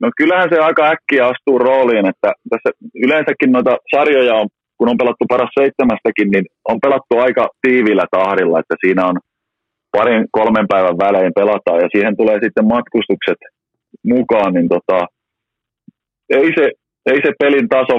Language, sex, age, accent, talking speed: Finnish, male, 30-49, native, 155 wpm